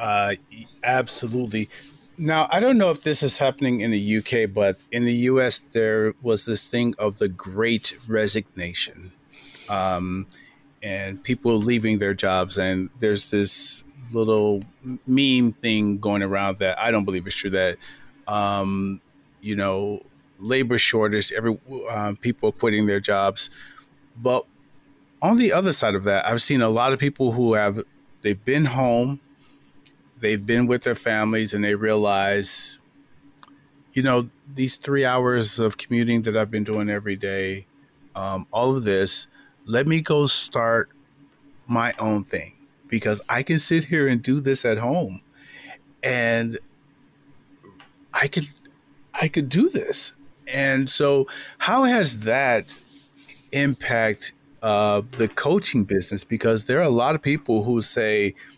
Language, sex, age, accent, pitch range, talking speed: English, male, 40-59, American, 105-140 Hz, 145 wpm